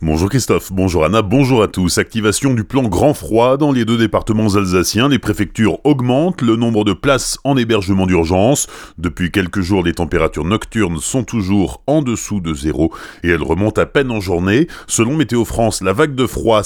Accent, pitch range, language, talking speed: French, 90-115 Hz, French, 190 wpm